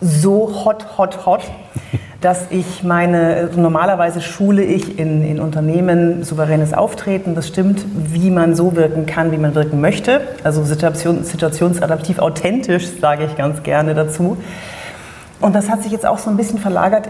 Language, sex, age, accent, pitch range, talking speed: German, female, 30-49, German, 160-200 Hz, 160 wpm